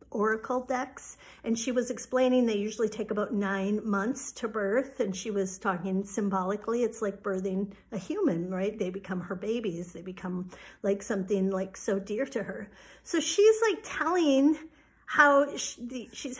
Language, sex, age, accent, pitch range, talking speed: English, female, 50-69, American, 230-290 Hz, 160 wpm